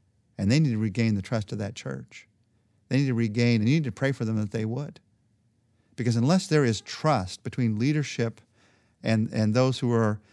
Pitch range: 110-135 Hz